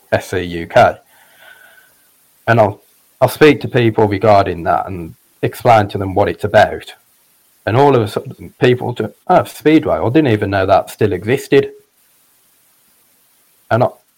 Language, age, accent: English, 30-49, British